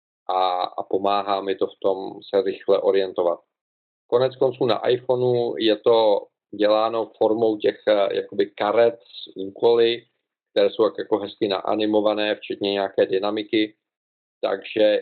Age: 40-59